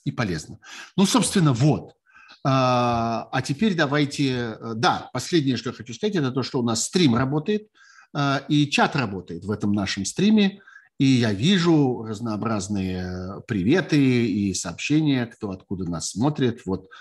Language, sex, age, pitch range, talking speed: Russian, male, 50-69, 100-140 Hz, 140 wpm